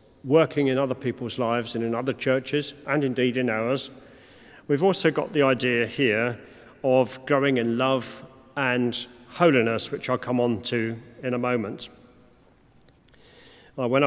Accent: British